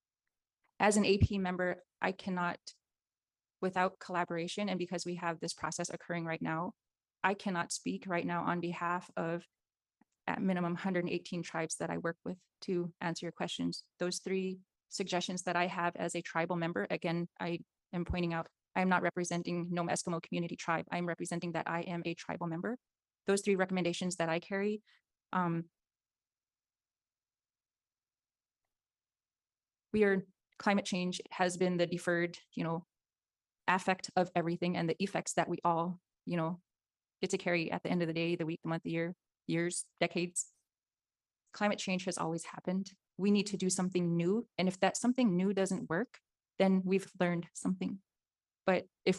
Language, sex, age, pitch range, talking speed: English, female, 30-49, 170-195 Hz, 170 wpm